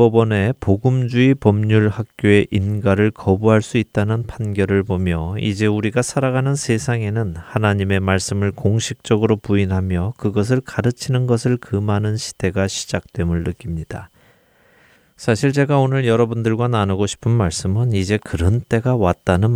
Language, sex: Korean, male